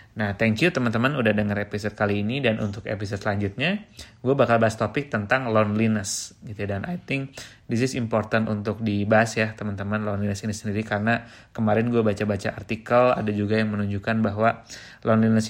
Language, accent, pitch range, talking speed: Indonesian, native, 105-120 Hz, 175 wpm